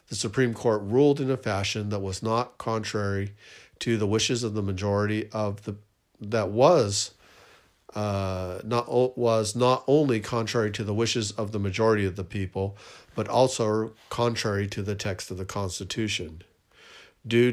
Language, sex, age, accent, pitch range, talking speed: English, male, 50-69, American, 105-115 Hz, 160 wpm